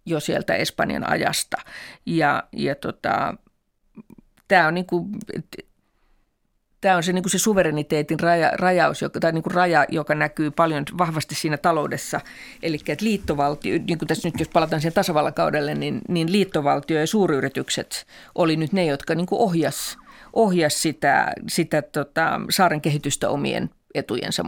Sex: female